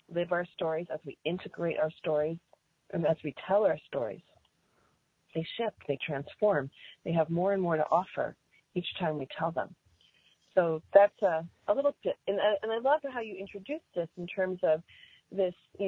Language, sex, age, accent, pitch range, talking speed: English, female, 40-59, American, 155-200 Hz, 190 wpm